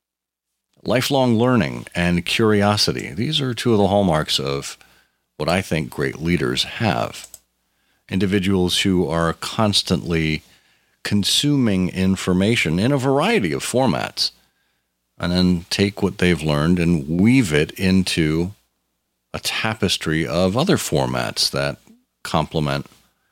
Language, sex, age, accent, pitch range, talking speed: English, male, 50-69, American, 75-105 Hz, 115 wpm